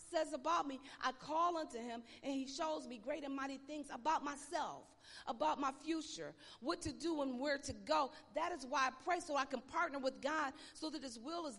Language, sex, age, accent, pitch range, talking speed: English, female, 40-59, American, 265-340 Hz, 225 wpm